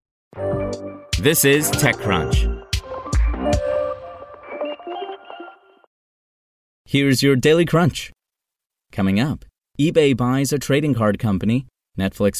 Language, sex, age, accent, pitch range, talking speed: English, male, 30-49, American, 95-135 Hz, 75 wpm